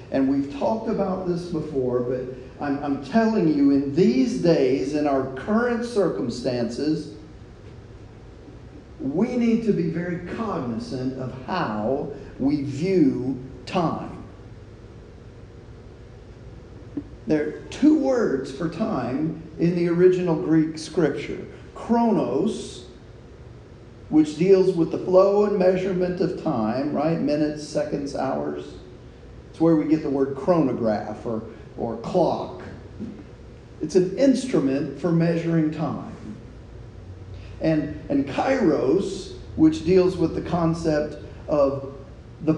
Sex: male